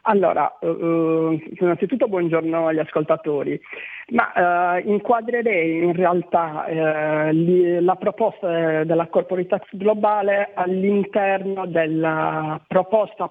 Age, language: 40-59, Italian